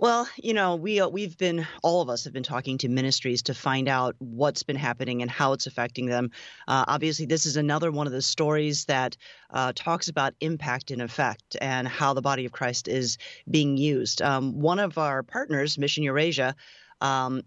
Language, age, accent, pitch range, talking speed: English, 30-49, American, 125-155 Hz, 205 wpm